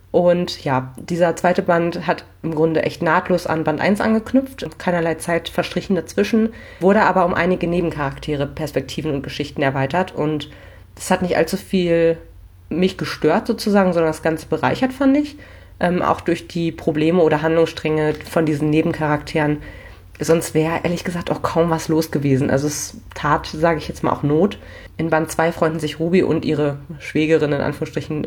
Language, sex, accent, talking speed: German, female, German, 175 wpm